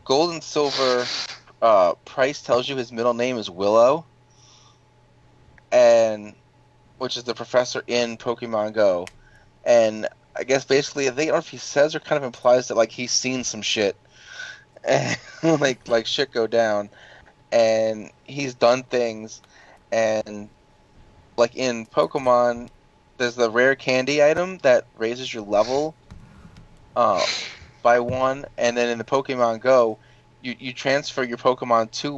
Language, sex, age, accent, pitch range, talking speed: English, male, 20-39, American, 110-130 Hz, 150 wpm